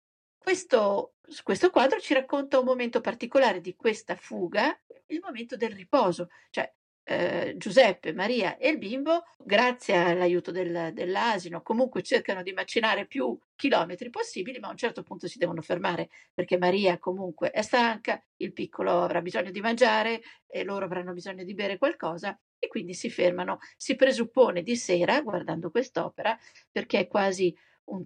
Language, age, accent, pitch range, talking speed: Italian, 50-69, native, 180-270 Hz, 155 wpm